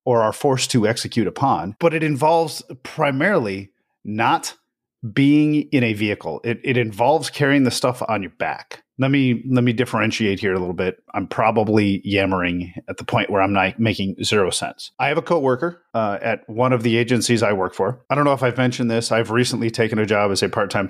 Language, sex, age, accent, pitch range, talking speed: English, male, 30-49, American, 105-125 Hz, 210 wpm